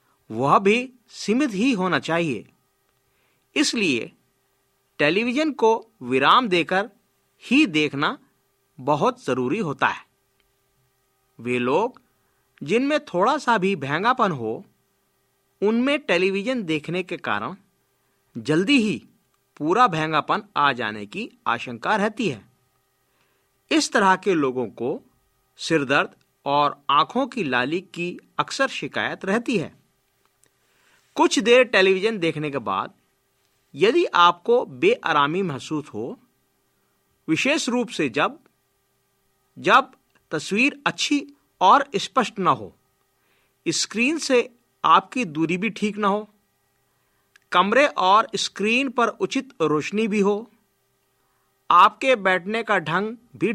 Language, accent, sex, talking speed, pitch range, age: Hindi, native, male, 110 wpm, 155-250 Hz, 50-69